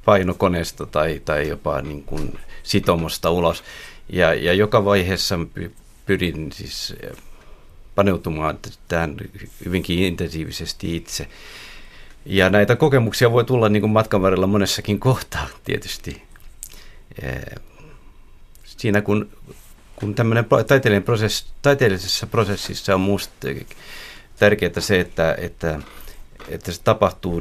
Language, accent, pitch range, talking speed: Finnish, native, 85-105 Hz, 100 wpm